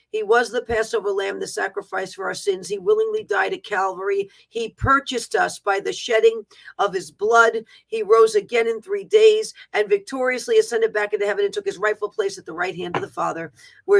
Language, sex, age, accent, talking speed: English, female, 40-59, American, 210 wpm